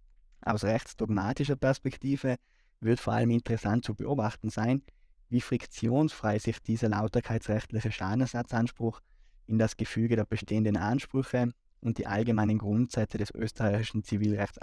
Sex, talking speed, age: male, 120 wpm, 20-39